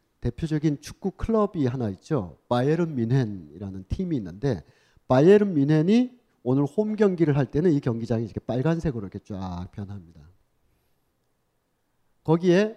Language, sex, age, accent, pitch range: Korean, male, 40-59, native, 120-190 Hz